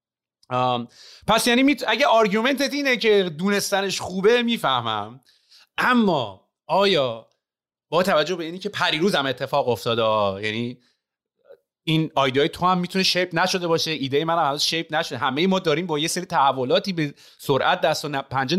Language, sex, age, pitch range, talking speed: Persian, male, 30-49, 130-195 Hz, 160 wpm